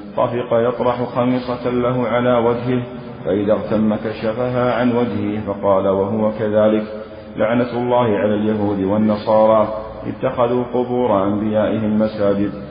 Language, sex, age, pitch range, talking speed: Arabic, male, 40-59, 100-120 Hz, 110 wpm